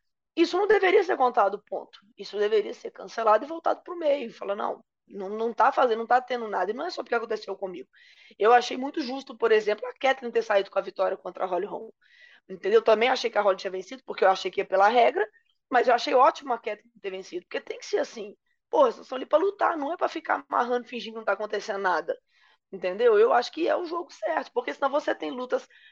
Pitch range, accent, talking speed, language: 210-335 Hz, Brazilian, 245 wpm, English